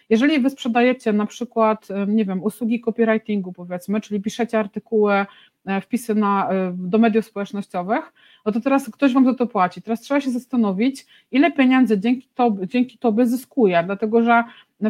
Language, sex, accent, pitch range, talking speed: Polish, female, native, 205-245 Hz, 155 wpm